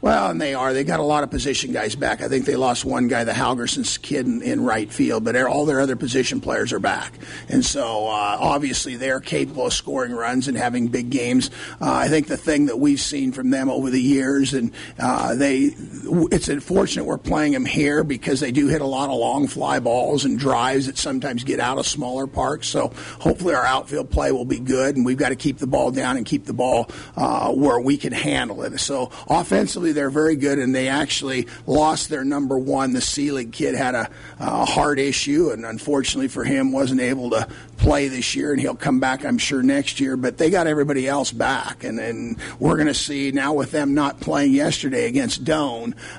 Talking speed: 220 wpm